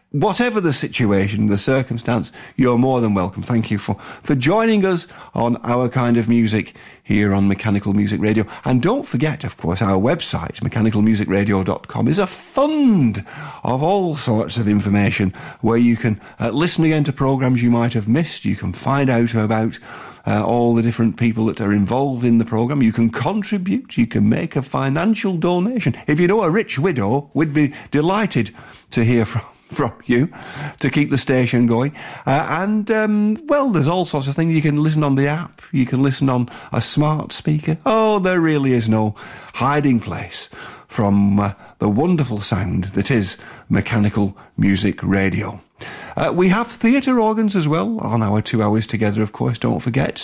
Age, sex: 50-69, male